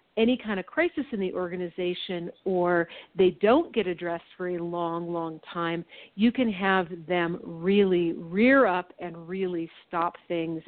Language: English